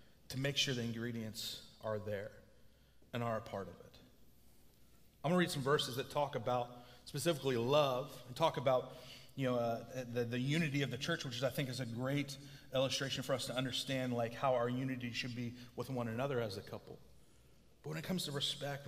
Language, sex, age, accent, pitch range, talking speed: English, male, 30-49, American, 120-145 Hz, 205 wpm